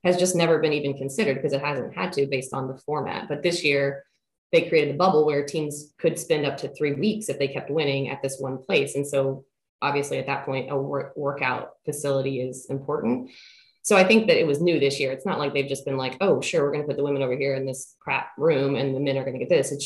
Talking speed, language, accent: 265 wpm, English, American